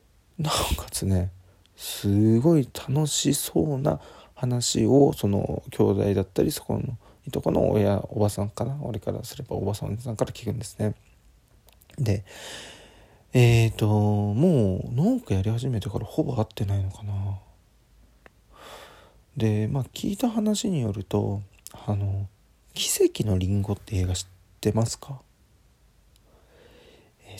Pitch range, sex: 100-125 Hz, male